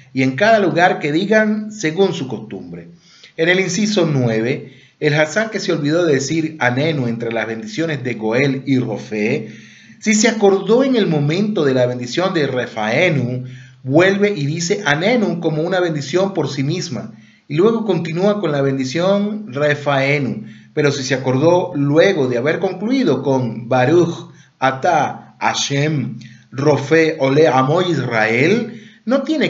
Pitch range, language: 130-180 Hz, Spanish